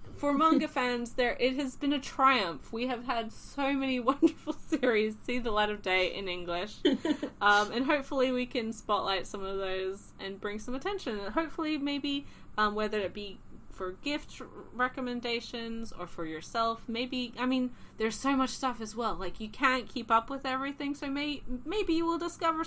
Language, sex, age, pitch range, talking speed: English, female, 20-39, 195-275 Hz, 190 wpm